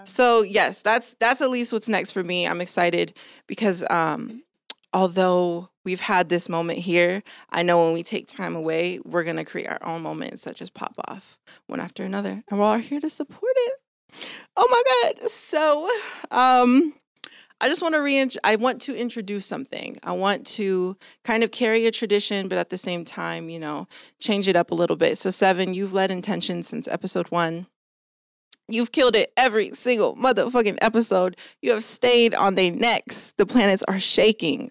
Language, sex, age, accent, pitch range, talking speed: English, female, 20-39, American, 185-240 Hz, 185 wpm